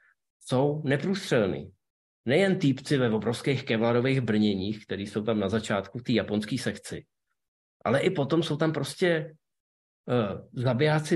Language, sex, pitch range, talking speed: Czech, male, 120-150 Hz, 125 wpm